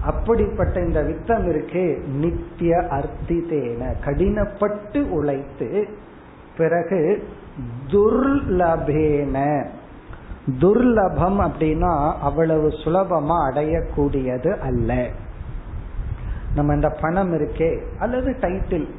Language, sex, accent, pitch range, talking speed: Tamil, male, native, 145-190 Hz, 50 wpm